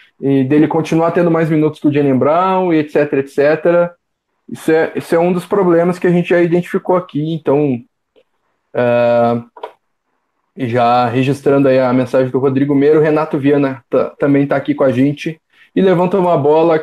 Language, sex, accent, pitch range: Portuguese, male, Brazilian, 130-165 Hz